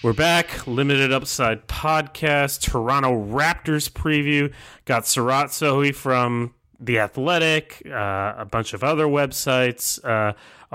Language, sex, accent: English, male, American